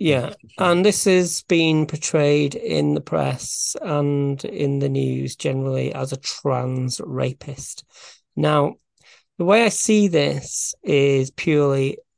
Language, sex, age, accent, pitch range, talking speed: English, male, 40-59, British, 135-170 Hz, 130 wpm